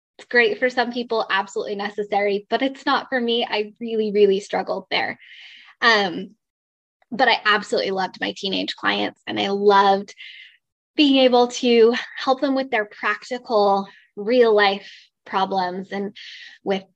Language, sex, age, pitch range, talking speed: English, female, 10-29, 200-250 Hz, 140 wpm